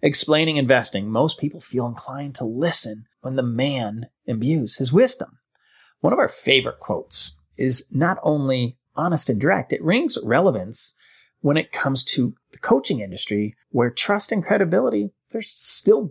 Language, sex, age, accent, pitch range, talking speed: English, male, 30-49, American, 130-185 Hz, 155 wpm